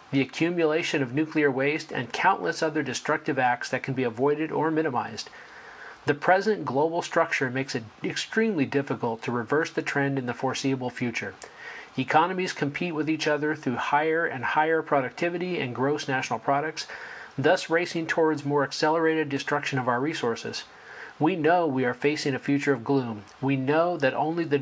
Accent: American